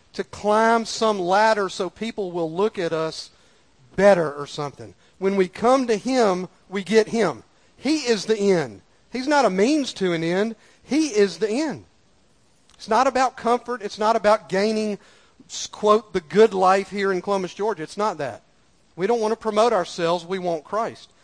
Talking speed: 180 wpm